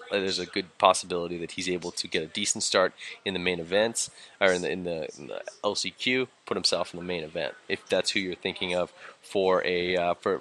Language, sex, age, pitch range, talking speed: English, male, 20-39, 90-100 Hz, 230 wpm